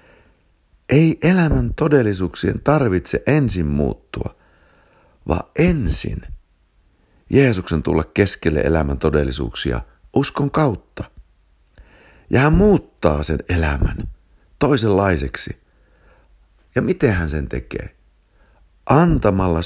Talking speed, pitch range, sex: 80 wpm, 80-130 Hz, male